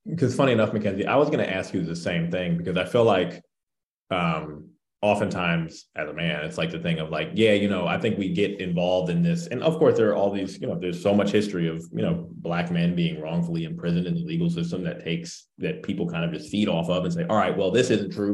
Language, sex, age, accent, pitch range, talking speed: English, male, 30-49, American, 90-115 Hz, 265 wpm